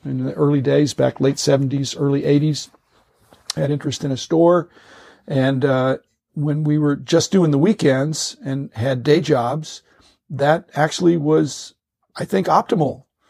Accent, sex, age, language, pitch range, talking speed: American, male, 50-69, English, 130-155 Hz, 150 wpm